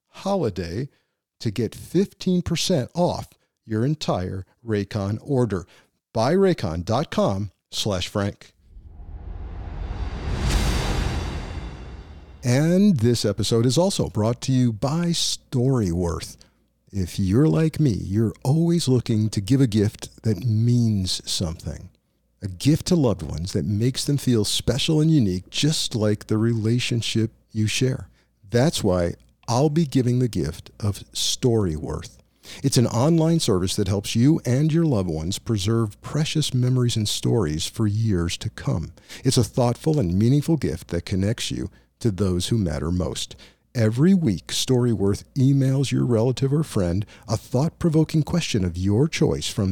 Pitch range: 95-140 Hz